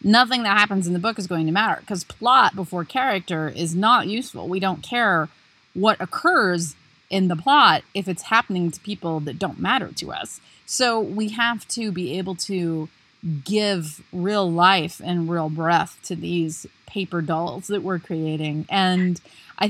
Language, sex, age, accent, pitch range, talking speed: English, female, 30-49, American, 170-200 Hz, 175 wpm